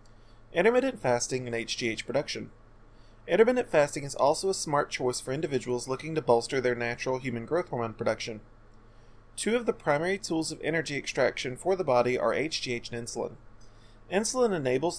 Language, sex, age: English, male, 30-49